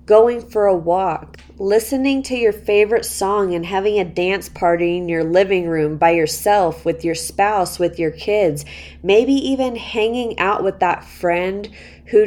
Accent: American